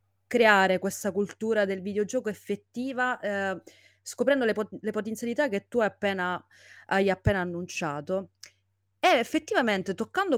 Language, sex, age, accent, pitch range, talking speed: Italian, female, 30-49, native, 175-235 Hz, 125 wpm